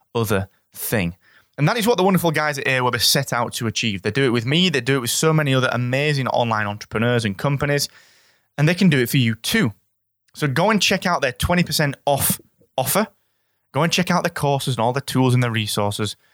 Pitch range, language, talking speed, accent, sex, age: 115-160 Hz, English, 230 wpm, British, male, 20-39